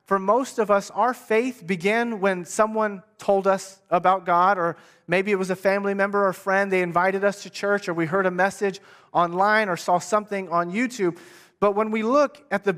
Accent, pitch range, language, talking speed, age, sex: American, 195-235 Hz, English, 205 wpm, 30-49, male